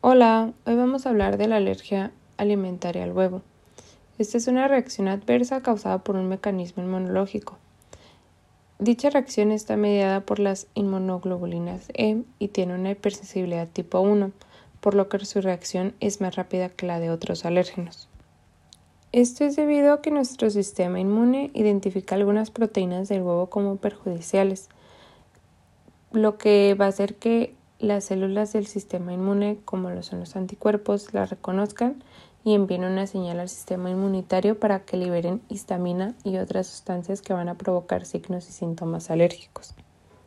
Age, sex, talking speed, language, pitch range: 20-39, female, 155 wpm, Spanish, 185-220 Hz